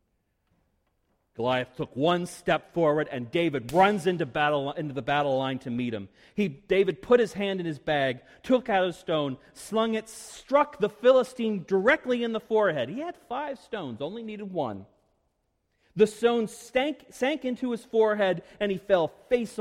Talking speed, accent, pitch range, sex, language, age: 170 wpm, American, 125-205 Hz, male, English, 40-59